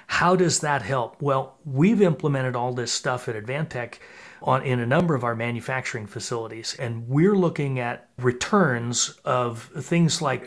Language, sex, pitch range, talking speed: English, male, 125-145 Hz, 155 wpm